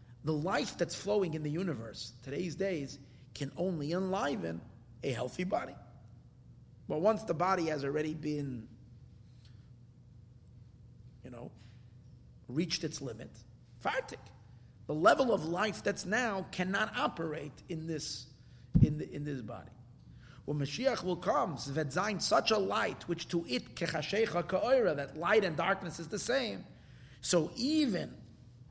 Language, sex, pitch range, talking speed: English, male, 120-175 Hz, 130 wpm